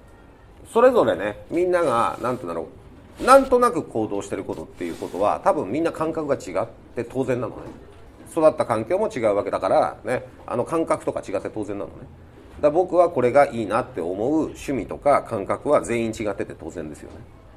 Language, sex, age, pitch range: Japanese, male, 40-59, 105-175 Hz